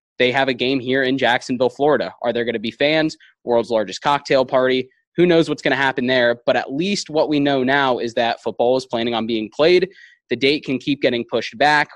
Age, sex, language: 20-39, male, English